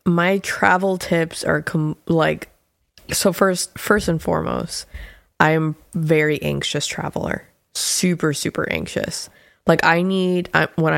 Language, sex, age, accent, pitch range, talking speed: English, female, 20-39, American, 145-180 Hz, 120 wpm